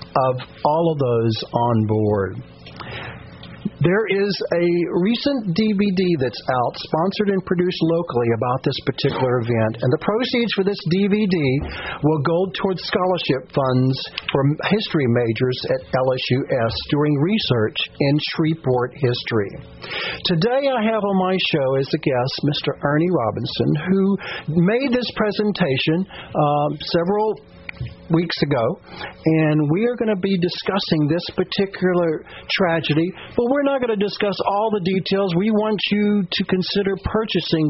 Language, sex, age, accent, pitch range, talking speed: English, male, 50-69, American, 135-195 Hz, 140 wpm